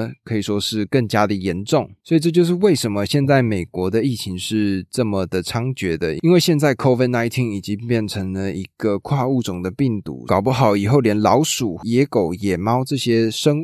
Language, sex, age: Chinese, male, 20-39